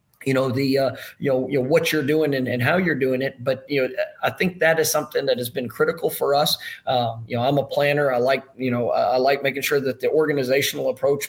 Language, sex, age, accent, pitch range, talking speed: English, male, 40-59, American, 130-155 Hz, 245 wpm